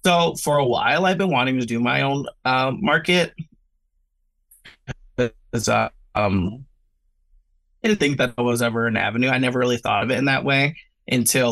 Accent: American